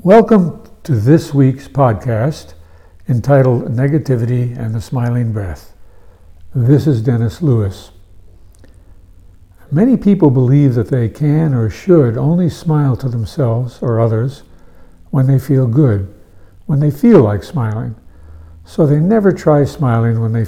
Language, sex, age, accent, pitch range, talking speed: English, male, 60-79, American, 100-140 Hz, 130 wpm